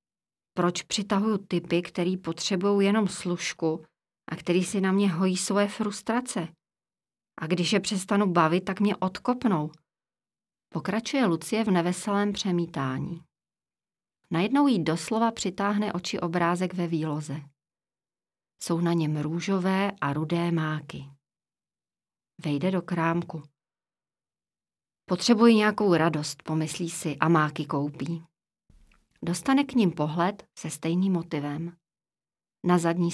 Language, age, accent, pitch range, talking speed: Czech, 40-59, native, 160-200 Hz, 115 wpm